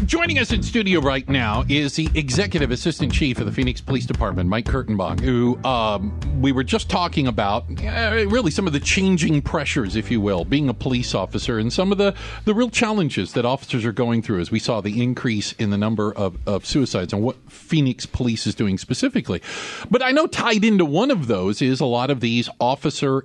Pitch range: 120-185 Hz